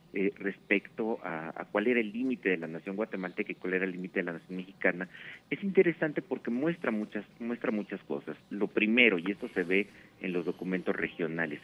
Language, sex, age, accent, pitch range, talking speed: Spanish, male, 50-69, Mexican, 90-125 Hz, 195 wpm